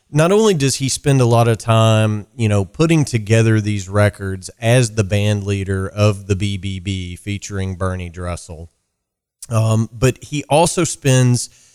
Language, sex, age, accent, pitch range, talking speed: English, male, 30-49, American, 100-115 Hz, 155 wpm